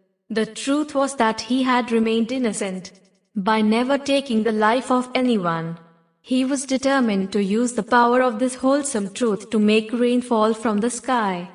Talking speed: 170 wpm